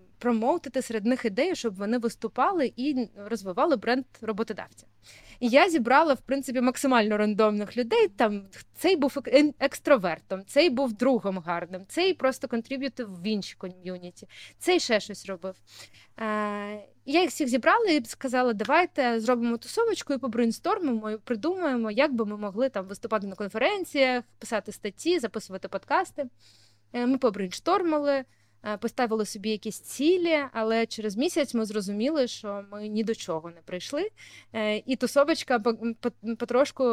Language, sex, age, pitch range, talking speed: Ukrainian, female, 20-39, 205-270 Hz, 135 wpm